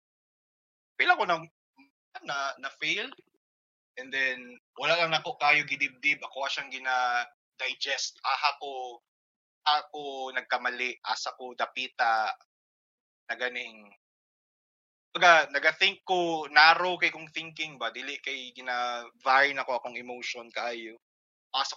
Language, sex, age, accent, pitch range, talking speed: English, male, 20-39, Filipino, 120-150 Hz, 95 wpm